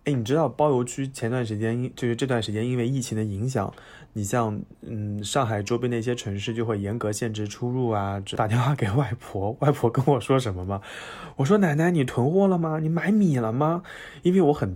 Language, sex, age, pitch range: Chinese, male, 20-39, 110-135 Hz